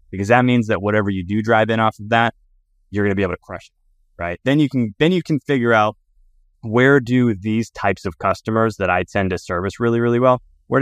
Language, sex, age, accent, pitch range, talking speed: English, male, 20-39, American, 90-115 Hz, 245 wpm